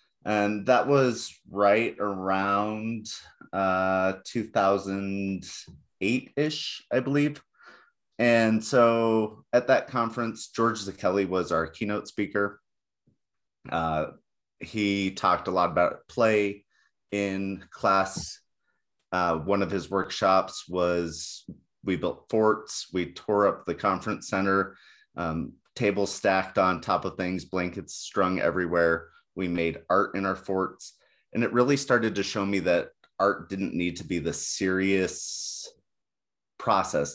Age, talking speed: 30-49, 125 wpm